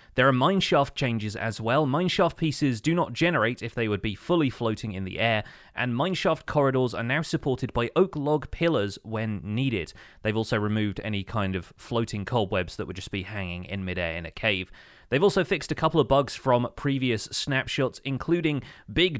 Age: 30-49